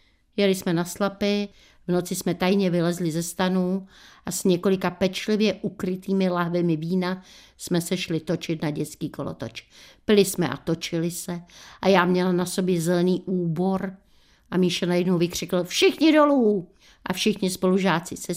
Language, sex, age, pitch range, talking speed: Czech, female, 60-79, 170-195 Hz, 155 wpm